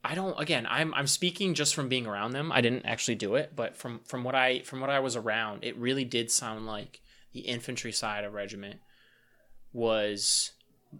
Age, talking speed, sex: 20-39, 200 wpm, male